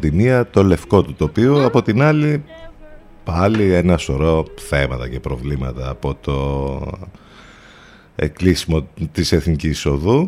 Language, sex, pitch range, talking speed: Greek, male, 75-100 Hz, 115 wpm